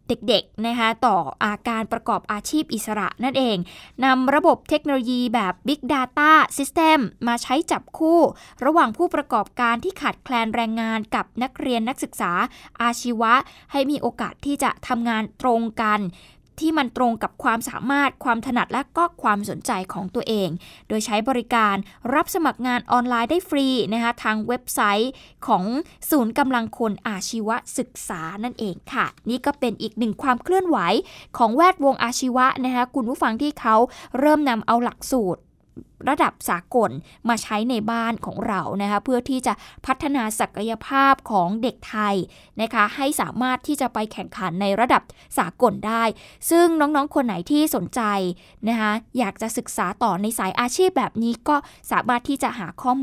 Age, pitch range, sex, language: 20-39, 220-270 Hz, female, Thai